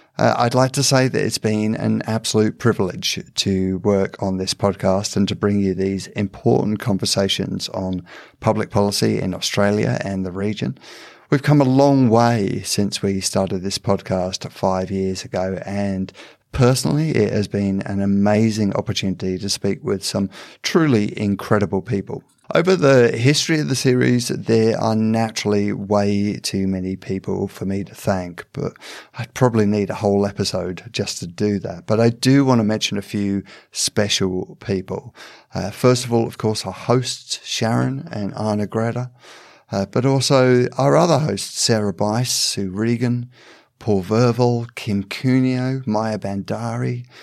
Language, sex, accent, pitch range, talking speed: English, male, British, 100-120 Hz, 160 wpm